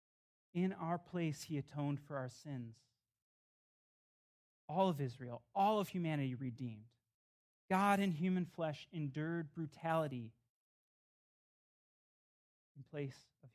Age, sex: 30-49, male